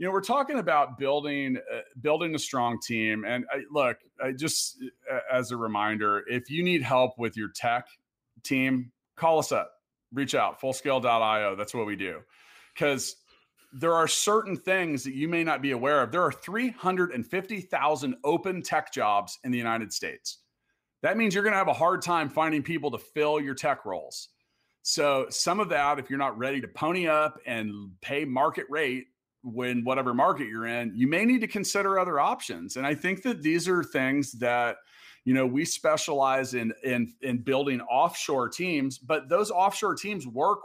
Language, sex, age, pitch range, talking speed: English, male, 30-49, 125-170 Hz, 185 wpm